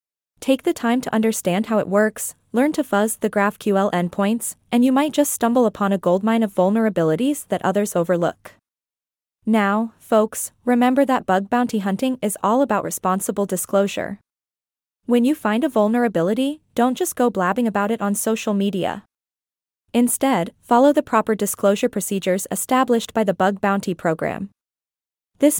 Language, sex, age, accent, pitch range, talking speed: English, female, 20-39, American, 200-255 Hz, 155 wpm